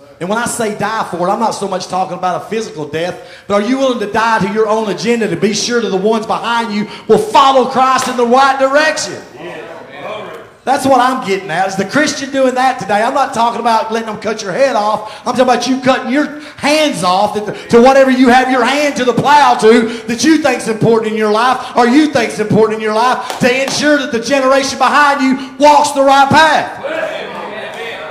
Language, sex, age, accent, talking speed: English, male, 30-49, American, 230 wpm